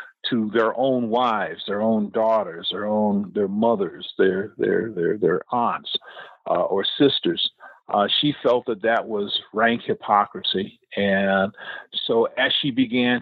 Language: English